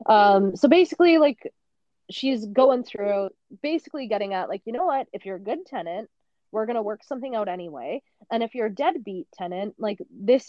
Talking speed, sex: 195 wpm, female